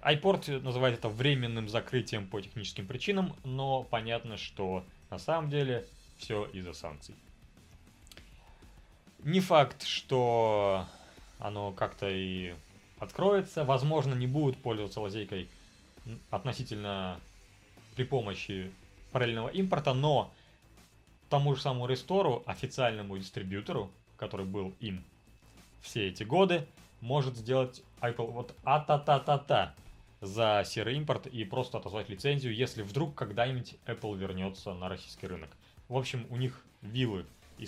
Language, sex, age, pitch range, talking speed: Russian, male, 20-39, 100-130 Hz, 115 wpm